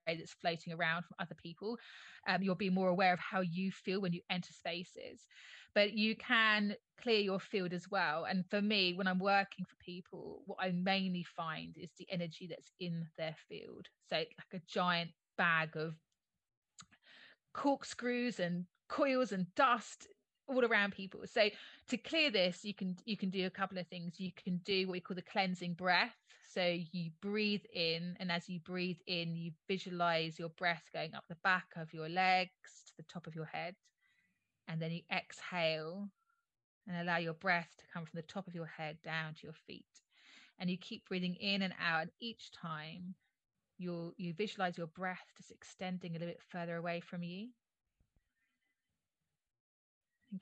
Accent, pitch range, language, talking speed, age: British, 175-205 Hz, English, 180 wpm, 30-49